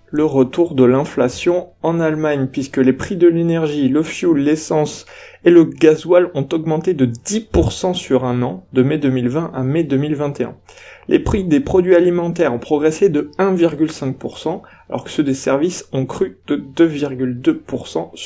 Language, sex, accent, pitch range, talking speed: French, male, French, 130-175 Hz, 160 wpm